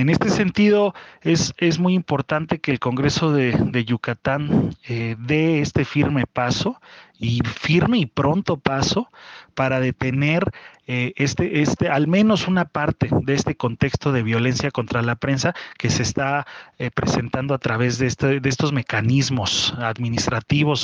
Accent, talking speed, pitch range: Mexican, 155 wpm, 120-145 Hz